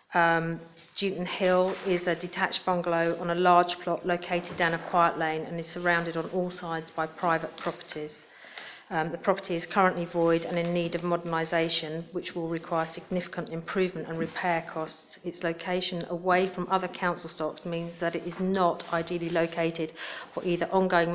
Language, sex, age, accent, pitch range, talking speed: English, female, 40-59, British, 165-180 Hz, 175 wpm